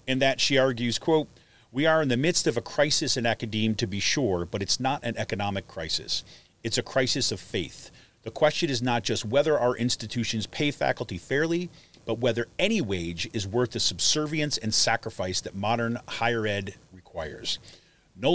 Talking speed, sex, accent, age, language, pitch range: 185 wpm, male, American, 40-59, English, 105-140 Hz